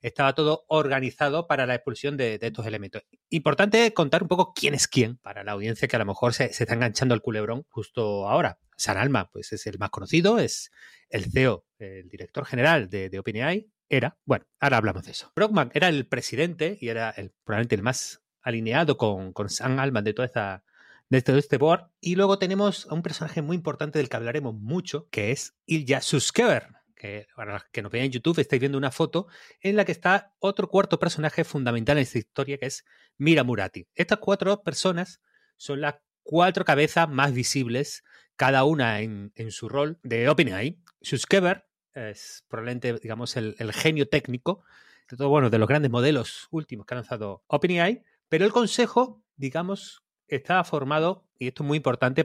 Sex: male